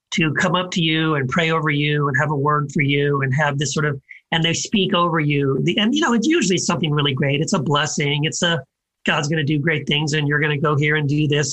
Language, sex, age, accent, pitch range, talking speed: English, male, 40-59, American, 155-210 Hz, 275 wpm